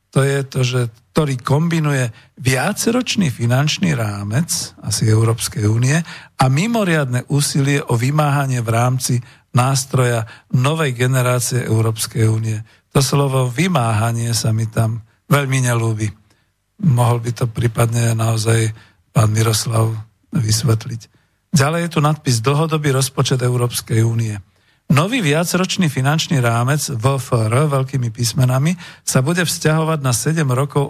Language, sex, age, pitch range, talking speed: Slovak, male, 50-69, 115-145 Hz, 120 wpm